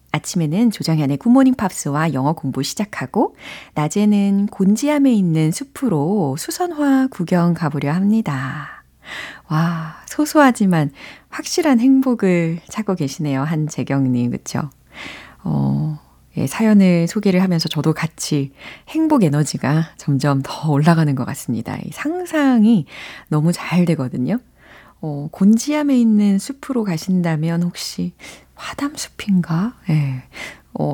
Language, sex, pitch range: Korean, female, 145-220 Hz